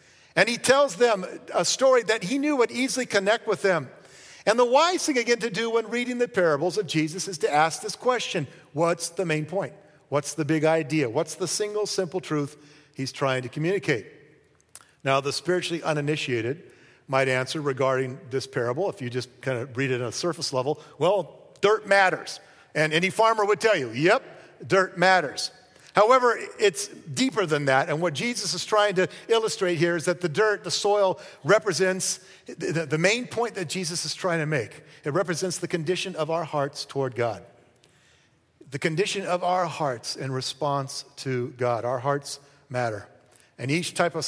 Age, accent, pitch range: 50-69, American, 140-190 Hz